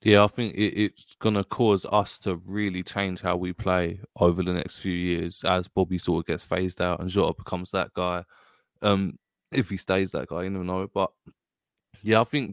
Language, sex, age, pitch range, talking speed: English, male, 20-39, 95-110 Hz, 215 wpm